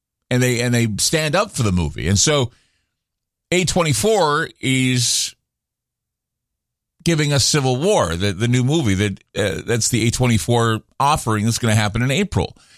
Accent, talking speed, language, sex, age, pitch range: American, 155 wpm, English, male, 50-69, 110-145 Hz